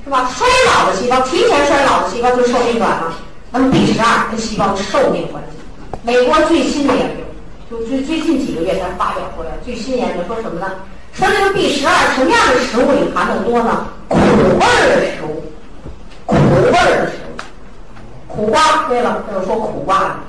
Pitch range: 200-300 Hz